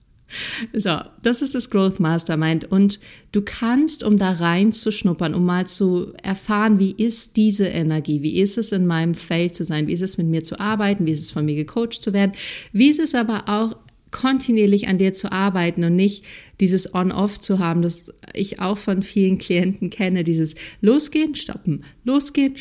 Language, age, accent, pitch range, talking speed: German, 50-69, German, 170-215 Hz, 190 wpm